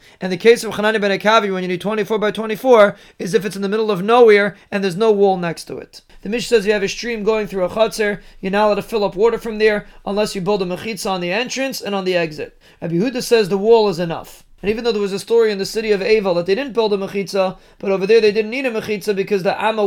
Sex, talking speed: male, 285 wpm